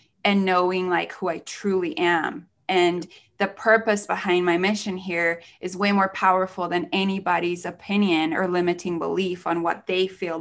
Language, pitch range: English, 175-205 Hz